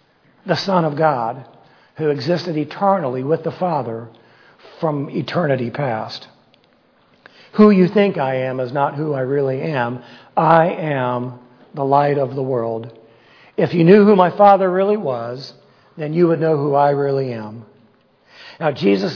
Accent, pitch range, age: American, 130-165 Hz, 60-79